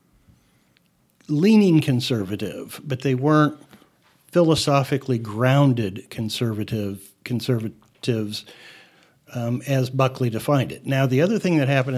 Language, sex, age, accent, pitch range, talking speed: English, male, 60-79, American, 120-140 Hz, 100 wpm